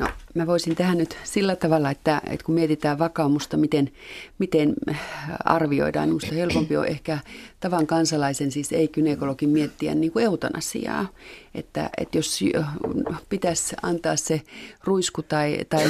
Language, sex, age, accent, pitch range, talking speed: Finnish, female, 40-59, native, 140-170 Hz, 140 wpm